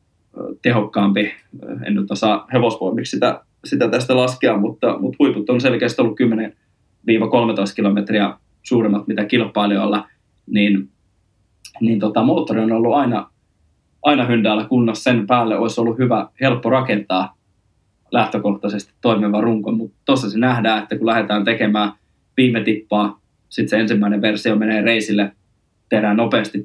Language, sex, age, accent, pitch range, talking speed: Finnish, male, 20-39, native, 105-115 Hz, 130 wpm